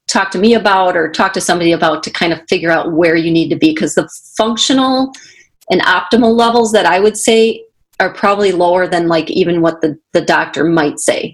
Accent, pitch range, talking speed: American, 170-220 Hz, 215 wpm